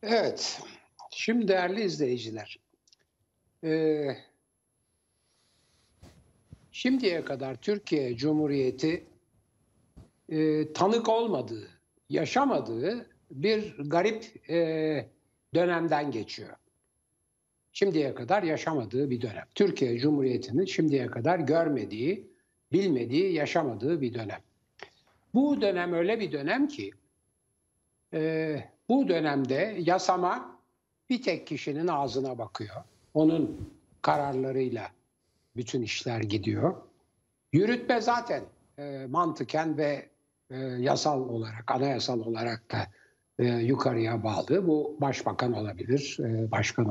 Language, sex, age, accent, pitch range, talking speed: Turkish, male, 60-79, native, 120-175 Hz, 85 wpm